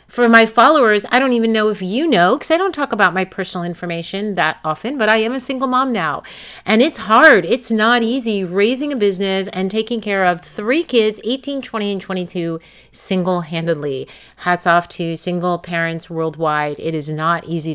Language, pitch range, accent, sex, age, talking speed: English, 155-190 Hz, American, female, 30-49, 195 wpm